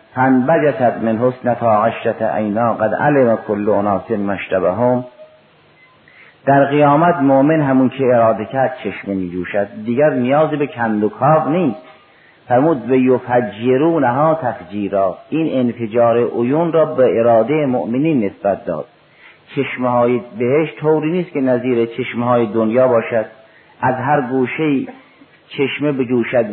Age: 50-69